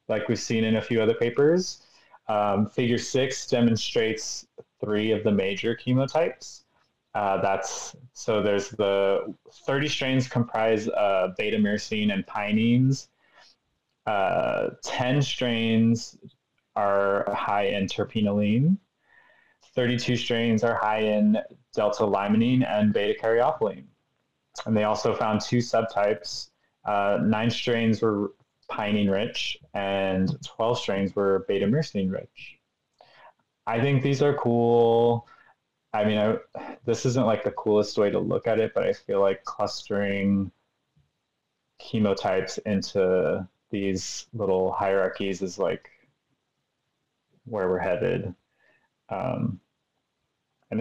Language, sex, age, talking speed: English, male, 20-39, 115 wpm